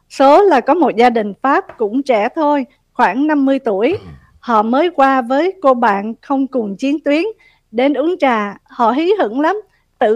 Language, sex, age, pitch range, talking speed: Vietnamese, female, 50-69, 230-290 Hz, 185 wpm